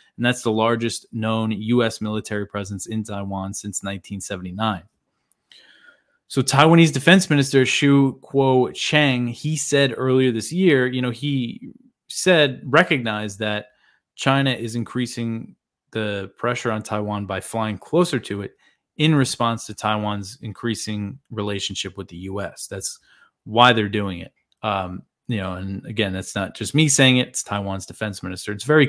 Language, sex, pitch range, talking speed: English, male, 105-130 Hz, 150 wpm